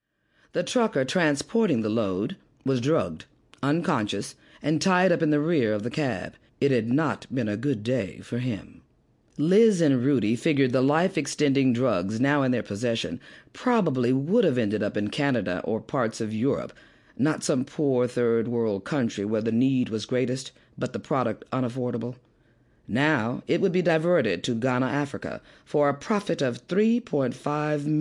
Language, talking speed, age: English, 160 wpm, 40-59